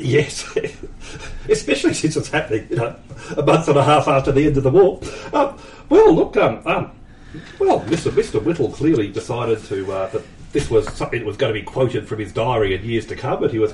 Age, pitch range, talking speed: 40-59, 110-155 Hz, 225 wpm